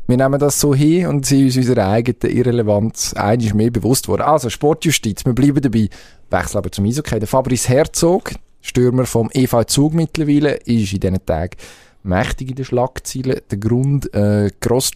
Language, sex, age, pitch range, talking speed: German, male, 20-39, 100-130 Hz, 175 wpm